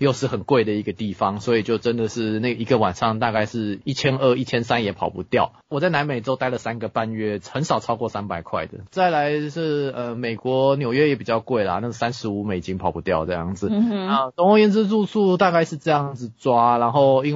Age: 20-39